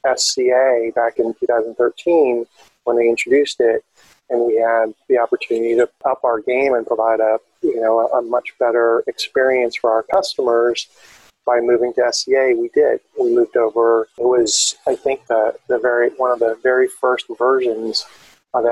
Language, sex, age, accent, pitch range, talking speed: English, male, 30-49, American, 115-145 Hz, 165 wpm